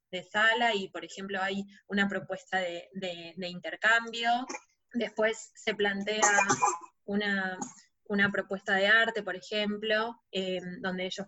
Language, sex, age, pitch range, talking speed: Spanish, female, 20-39, 190-215 Hz, 135 wpm